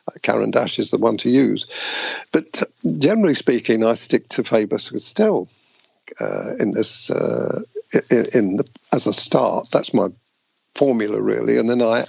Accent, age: British, 50-69